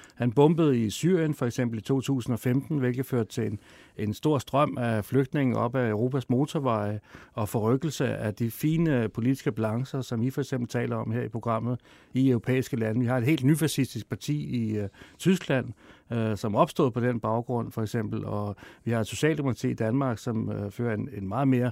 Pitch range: 115-145 Hz